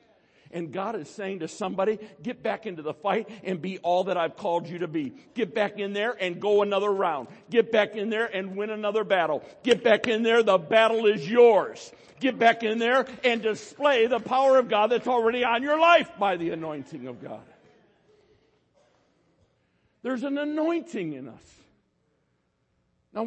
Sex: male